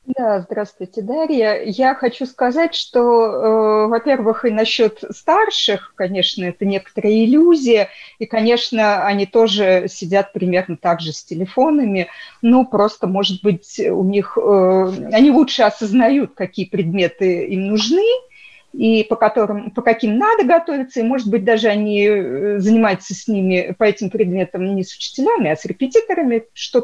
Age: 30-49